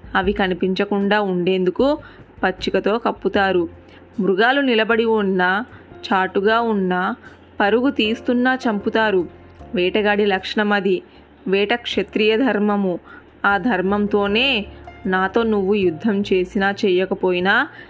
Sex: female